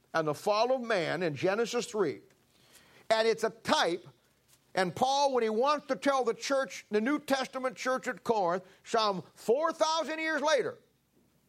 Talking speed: 160 wpm